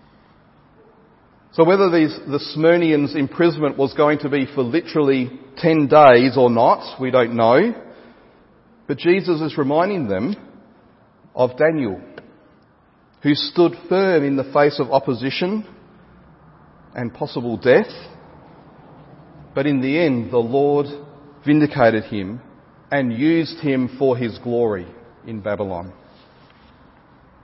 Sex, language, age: male, English, 40-59